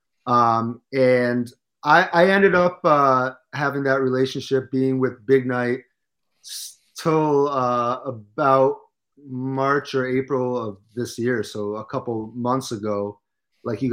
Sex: male